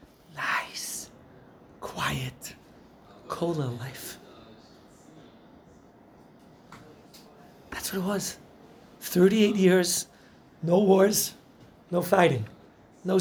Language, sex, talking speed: English, male, 70 wpm